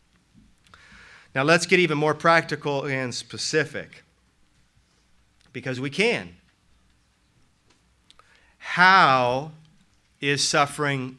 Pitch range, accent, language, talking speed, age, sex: 125-155 Hz, American, English, 75 wpm, 40-59, male